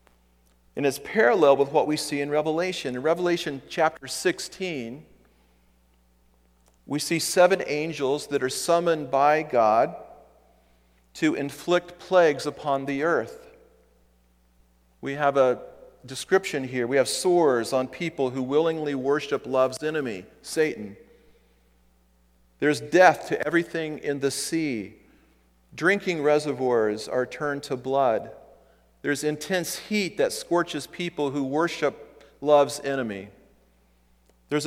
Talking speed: 120 wpm